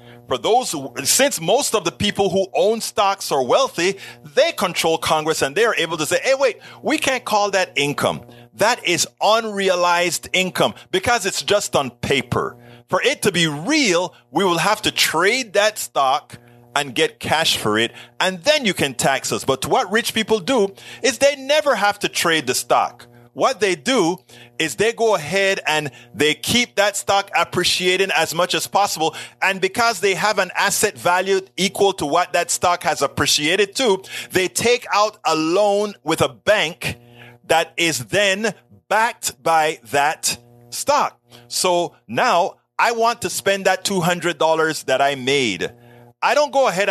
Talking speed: 175 wpm